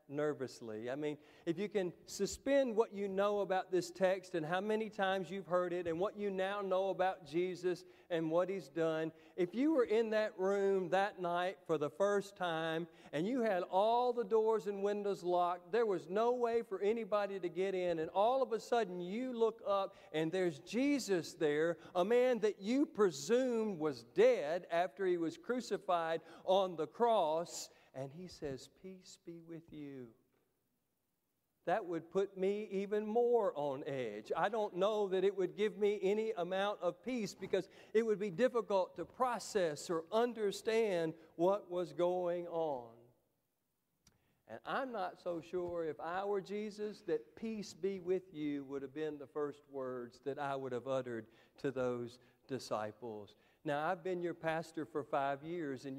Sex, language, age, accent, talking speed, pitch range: male, English, 40-59, American, 175 wpm, 155-205 Hz